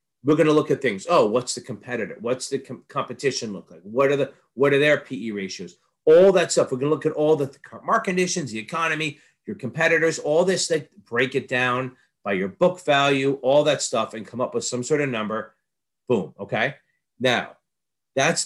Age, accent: 40-59, American